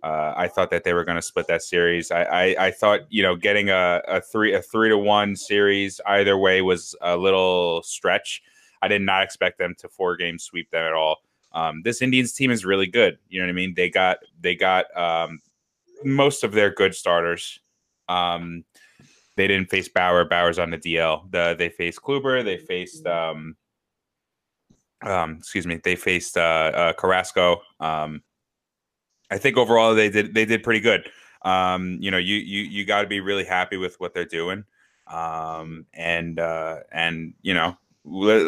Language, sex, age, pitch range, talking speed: English, male, 20-39, 85-120 Hz, 190 wpm